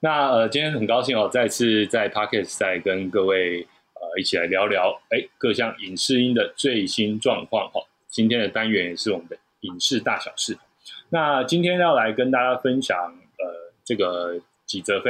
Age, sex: 20-39, male